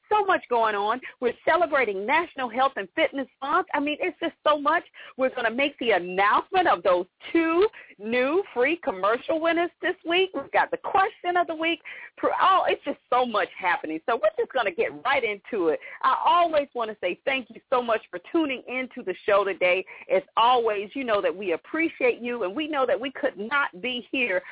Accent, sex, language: American, female, English